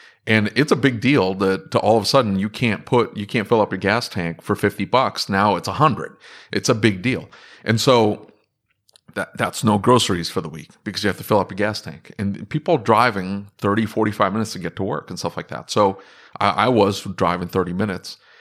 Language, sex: English, male